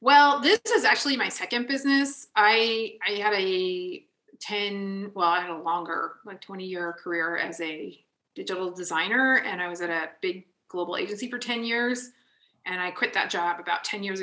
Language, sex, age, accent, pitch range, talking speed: English, female, 30-49, American, 195-245 Hz, 180 wpm